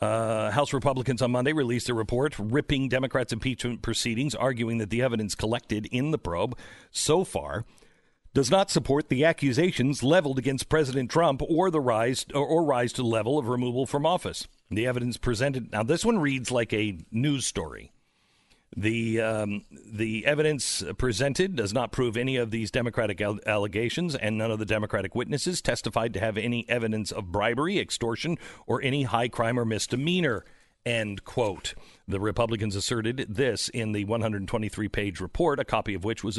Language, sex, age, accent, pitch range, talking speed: English, male, 50-69, American, 105-135 Hz, 170 wpm